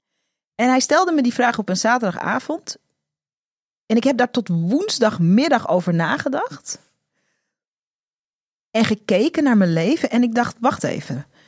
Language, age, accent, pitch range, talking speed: Dutch, 40-59, Dutch, 180-255 Hz, 140 wpm